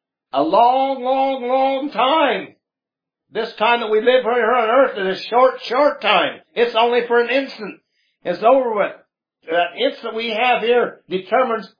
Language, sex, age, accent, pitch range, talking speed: English, male, 60-79, American, 185-265 Hz, 165 wpm